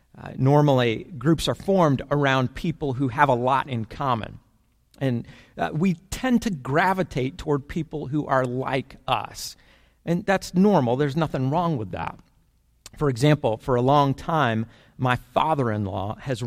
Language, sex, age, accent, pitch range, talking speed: English, male, 50-69, American, 130-180 Hz, 155 wpm